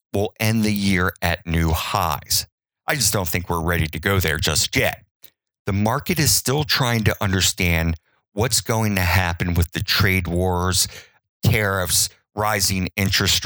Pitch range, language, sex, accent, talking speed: 90-115 Hz, English, male, American, 160 wpm